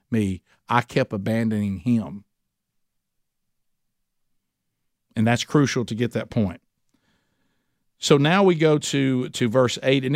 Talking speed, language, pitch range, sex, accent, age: 125 wpm, English, 110-130 Hz, male, American, 50-69